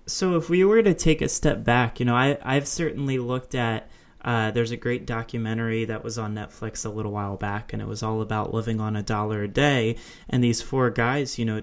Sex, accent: male, American